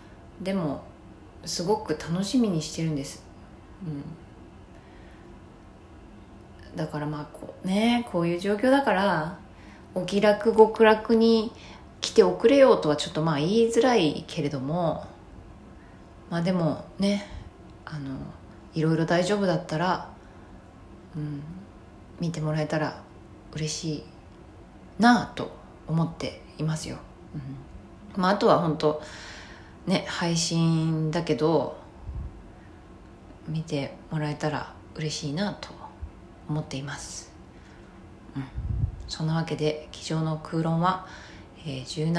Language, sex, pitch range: Japanese, female, 145-180 Hz